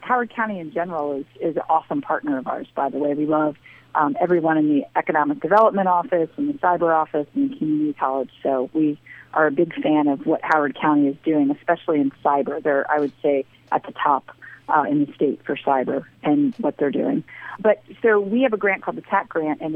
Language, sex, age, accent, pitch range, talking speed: English, female, 40-59, American, 150-175 Hz, 225 wpm